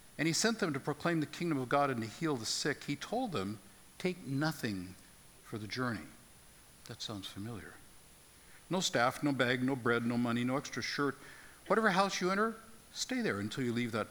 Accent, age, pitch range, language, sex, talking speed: American, 60-79, 115-160 Hz, English, male, 200 wpm